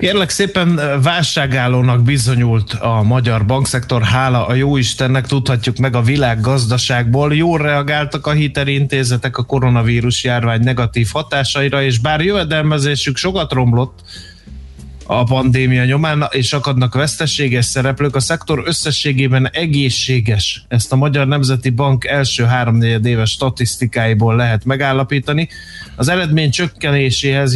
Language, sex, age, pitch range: Hungarian, male, 30-49, 120-145 Hz